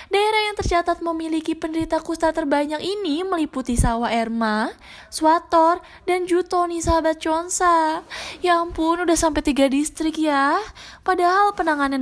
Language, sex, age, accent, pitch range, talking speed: Indonesian, female, 10-29, native, 265-355 Hz, 125 wpm